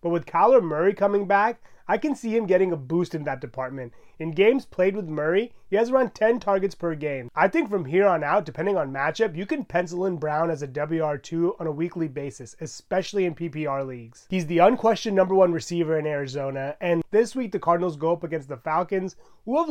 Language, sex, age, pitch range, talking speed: English, male, 30-49, 155-205 Hz, 220 wpm